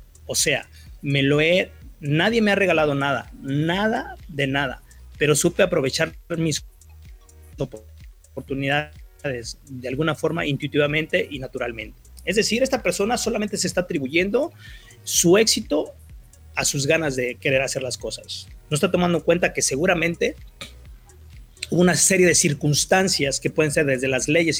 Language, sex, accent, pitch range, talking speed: Spanish, male, Mexican, 130-175 Hz, 140 wpm